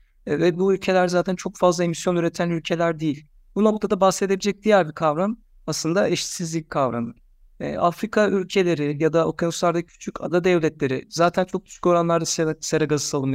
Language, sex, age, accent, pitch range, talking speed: Turkish, male, 60-79, native, 155-190 Hz, 155 wpm